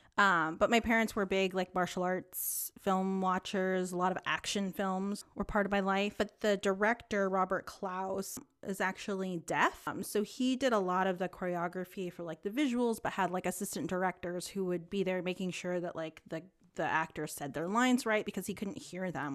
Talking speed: 210 wpm